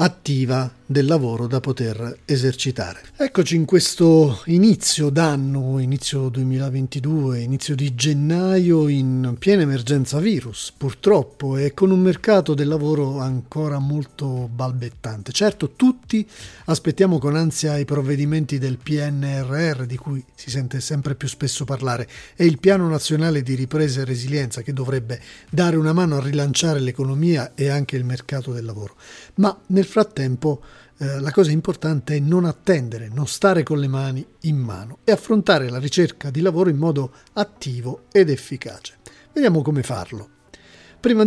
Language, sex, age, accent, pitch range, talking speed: Italian, male, 40-59, native, 135-175 Hz, 145 wpm